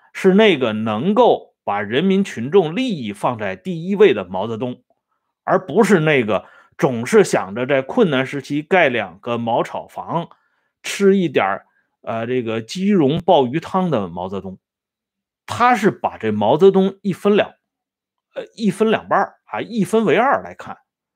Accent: Chinese